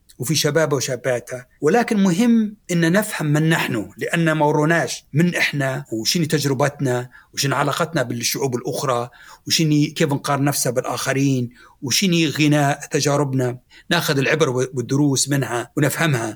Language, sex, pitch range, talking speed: Arabic, male, 125-160 Hz, 115 wpm